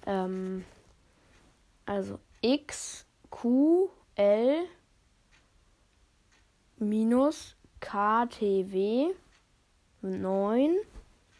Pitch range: 195-270 Hz